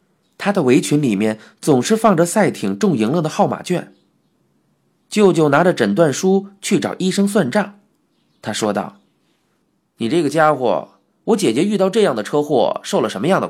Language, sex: Chinese, male